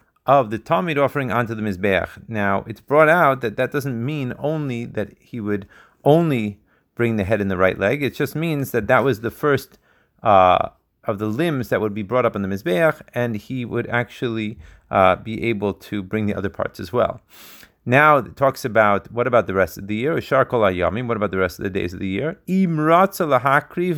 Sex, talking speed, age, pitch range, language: male, 210 wpm, 30-49, 110-150 Hz, Hebrew